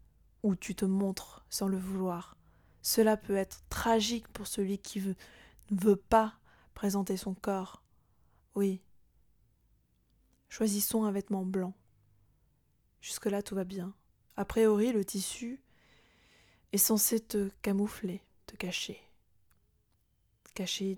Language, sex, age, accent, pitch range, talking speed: French, female, 20-39, French, 190-225 Hz, 120 wpm